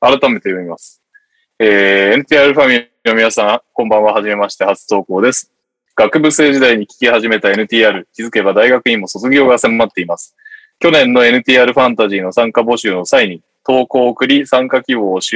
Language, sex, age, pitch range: Japanese, male, 20-39, 100-150 Hz